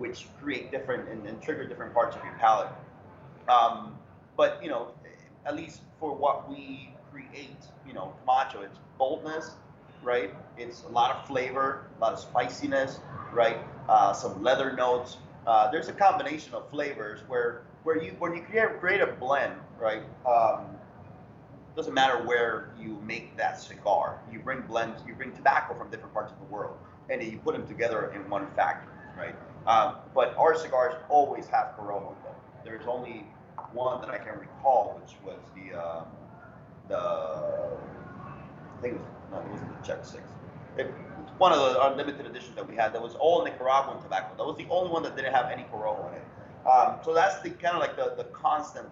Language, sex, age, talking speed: English, male, 30-49, 190 wpm